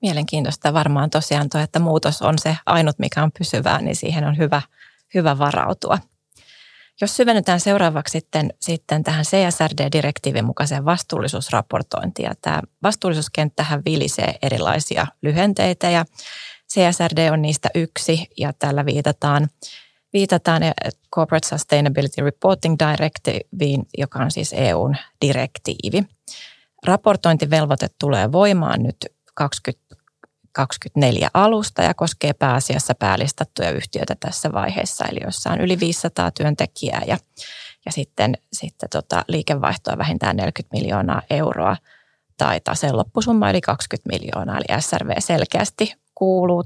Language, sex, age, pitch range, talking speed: Finnish, female, 30-49, 145-175 Hz, 115 wpm